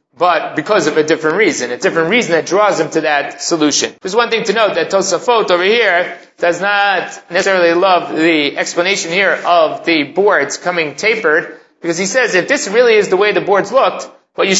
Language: English